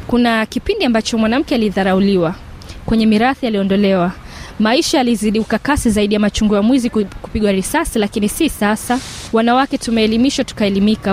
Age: 20-39